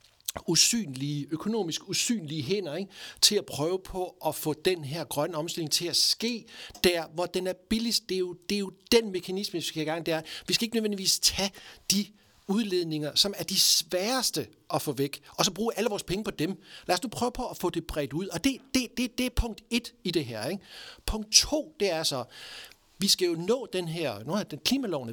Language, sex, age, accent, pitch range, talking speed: Danish, male, 60-79, native, 150-200 Hz, 220 wpm